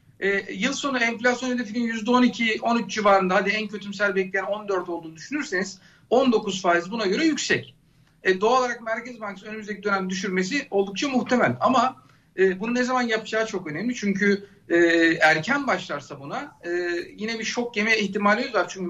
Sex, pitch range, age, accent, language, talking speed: male, 175-225 Hz, 50-69, native, Turkish, 160 wpm